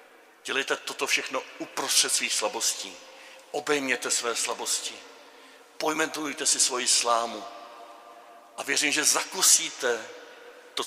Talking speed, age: 100 wpm, 50-69